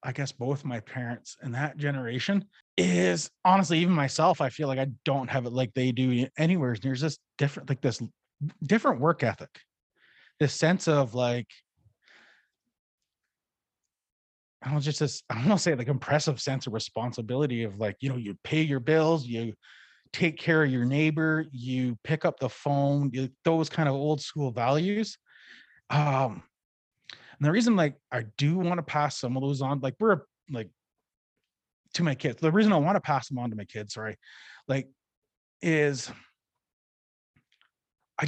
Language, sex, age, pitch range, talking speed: English, male, 20-39, 120-155 Hz, 170 wpm